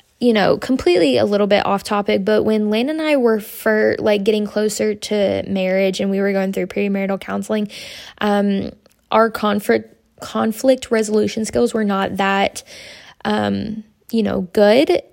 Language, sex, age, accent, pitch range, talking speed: English, female, 10-29, American, 200-230 Hz, 160 wpm